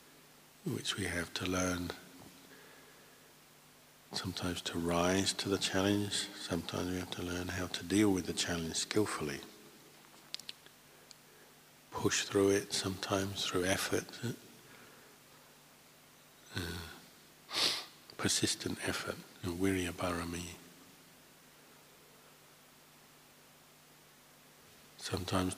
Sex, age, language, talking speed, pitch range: male, 60-79, English, 80 wpm, 85-95 Hz